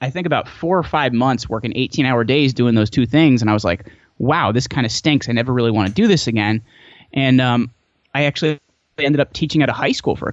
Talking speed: 260 wpm